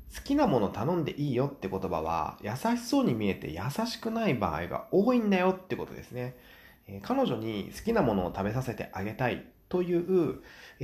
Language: Japanese